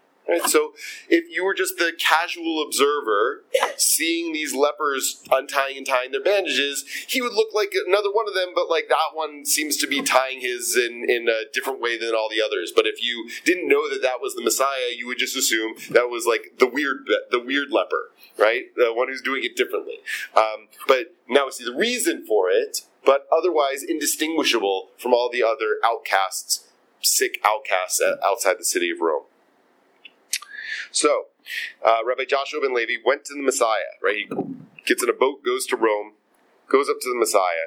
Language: English